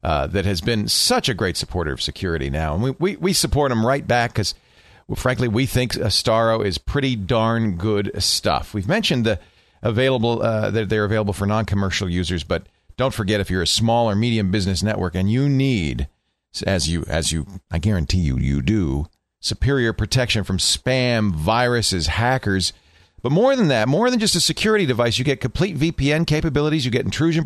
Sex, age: male, 40-59